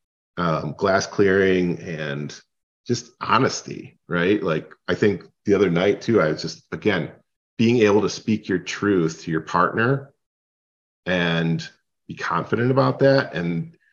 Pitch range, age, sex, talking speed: 90-120 Hz, 40-59, male, 140 wpm